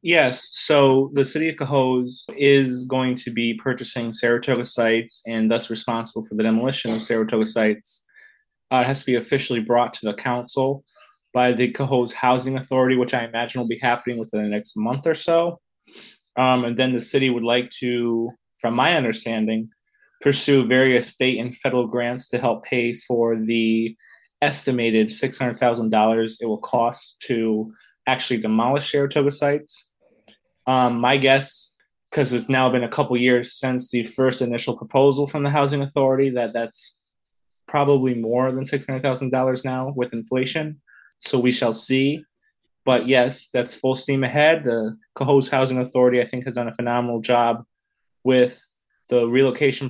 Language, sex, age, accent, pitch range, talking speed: English, male, 20-39, American, 120-135 Hz, 160 wpm